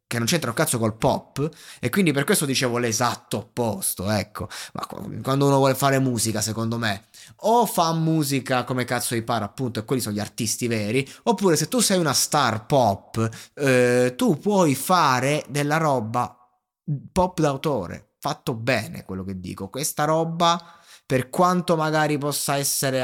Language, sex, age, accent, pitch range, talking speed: Italian, male, 20-39, native, 125-170 Hz, 165 wpm